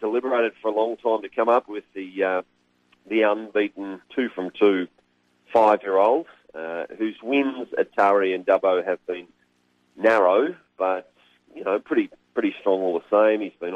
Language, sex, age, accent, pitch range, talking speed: English, male, 40-59, Australian, 80-110 Hz, 155 wpm